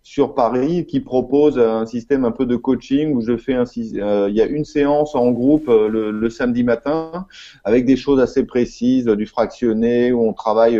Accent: French